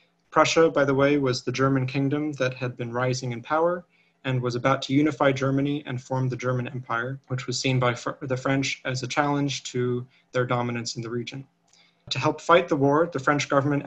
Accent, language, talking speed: American, English, 210 wpm